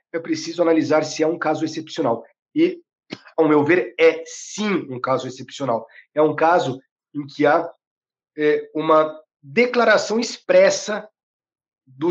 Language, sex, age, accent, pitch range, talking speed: Portuguese, male, 40-59, Brazilian, 145-190 Hz, 135 wpm